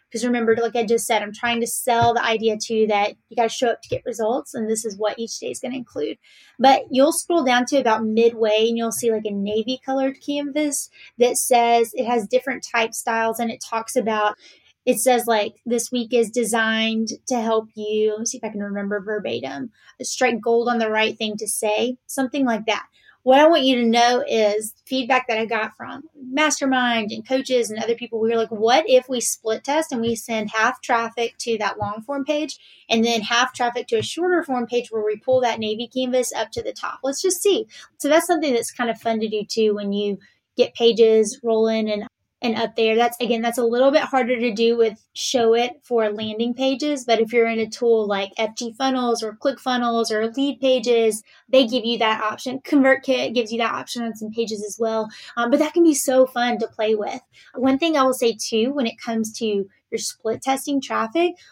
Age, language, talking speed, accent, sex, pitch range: 30-49, English, 230 wpm, American, female, 220-260 Hz